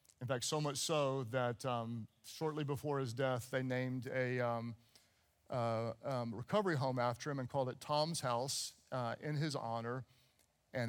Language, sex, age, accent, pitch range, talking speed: English, male, 50-69, American, 120-170 Hz, 170 wpm